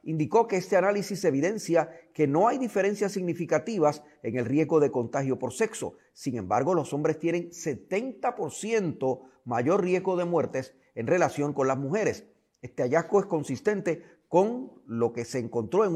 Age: 40-59